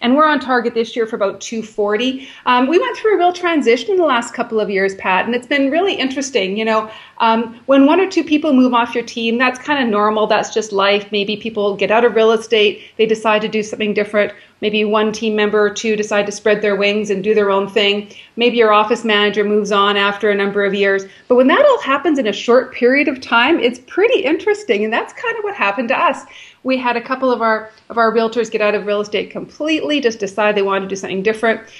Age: 40-59